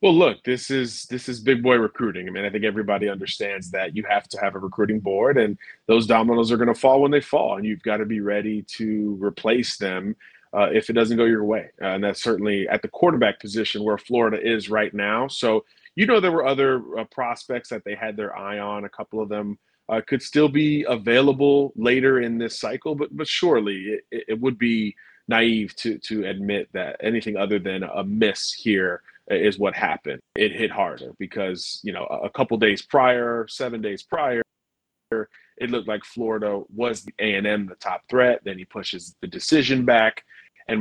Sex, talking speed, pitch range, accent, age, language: male, 205 wpm, 100-120 Hz, American, 30-49, English